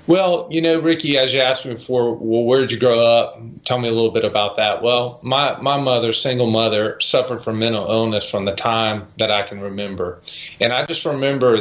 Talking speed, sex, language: 220 wpm, male, English